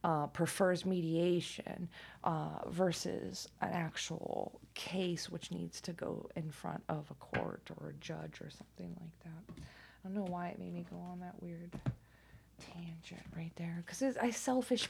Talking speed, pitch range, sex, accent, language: 165 wpm, 145-190 Hz, female, American, English